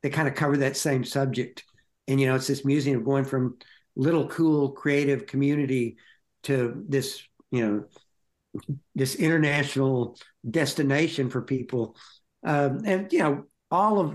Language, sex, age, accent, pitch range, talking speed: English, male, 60-79, American, 125-150 Hz, 145 wpm